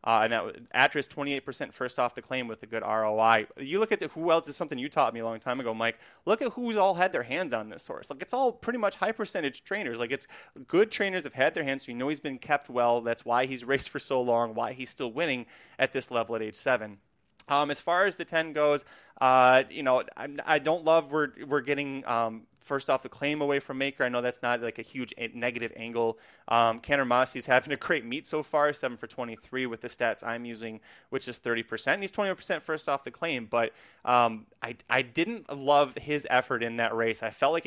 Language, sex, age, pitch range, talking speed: English, male, 30-49, 115-145 Hz, 245 wpm